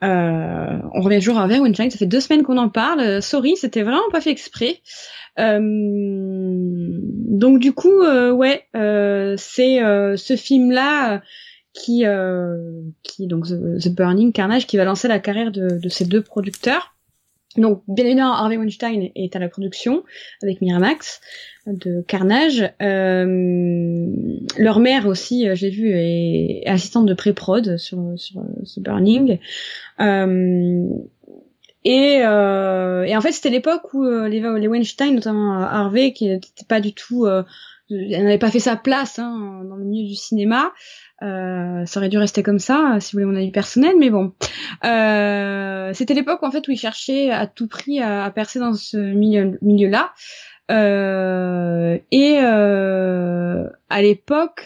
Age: 20-39